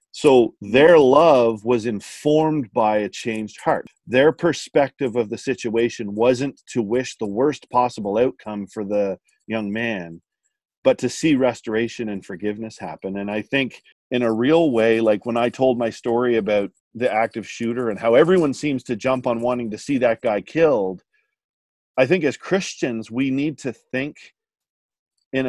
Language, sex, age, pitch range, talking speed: English, male, 40-59, 110-125 Hz, 165 wpm